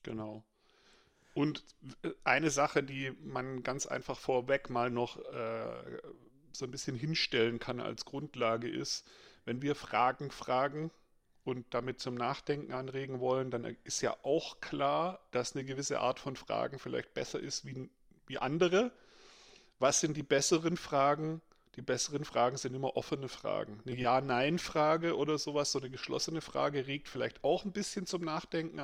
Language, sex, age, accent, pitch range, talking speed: German, male, 40-59, German, 130-160 Hz, 155 wpm